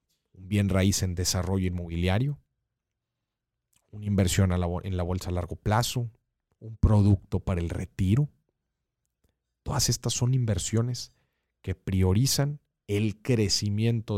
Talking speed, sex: 115 wpm, male